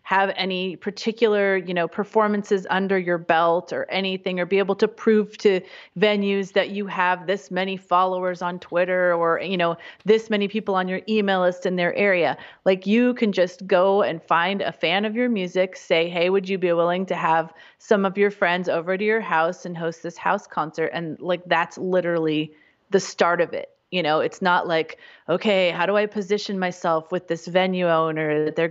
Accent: American